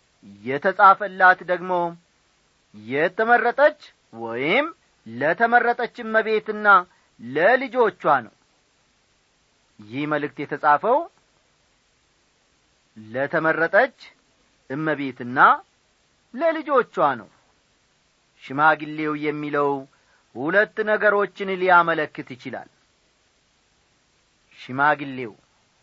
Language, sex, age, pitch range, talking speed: Amharic, male, 40-59, 140-220 Hz, 50 wpm